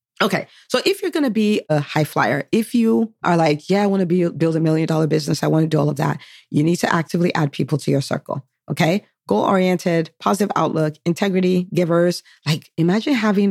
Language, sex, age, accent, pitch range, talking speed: English, female, 40-59, American, 150-185 Hz, 210 wpm